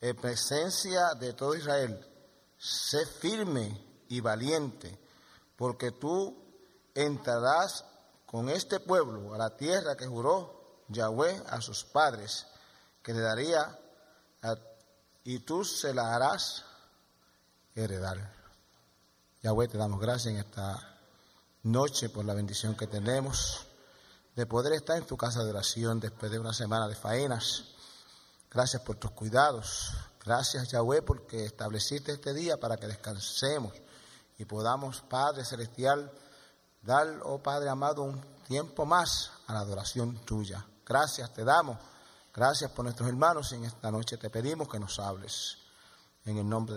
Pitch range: 105-135 Hz